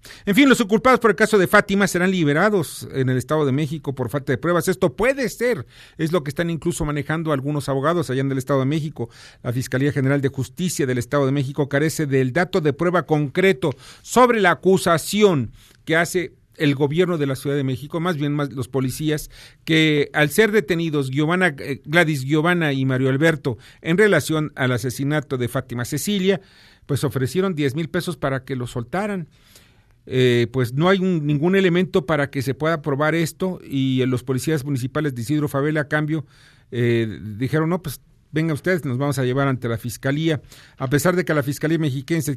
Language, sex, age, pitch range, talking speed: Spanish, male, 40-59, 130-165 Hz, 190 wpm